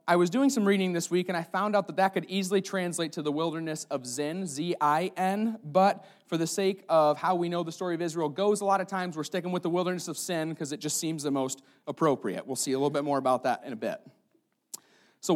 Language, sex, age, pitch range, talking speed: English, male, 30-49, 155-195 Hz, 255 wpm